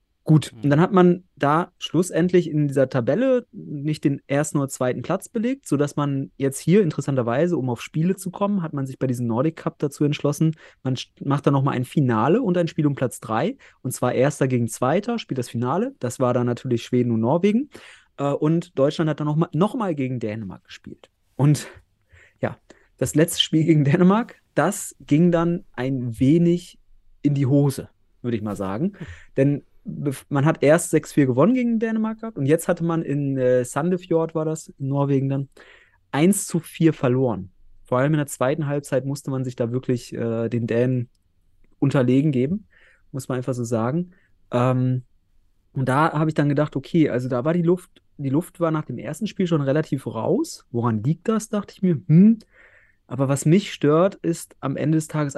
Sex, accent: male, German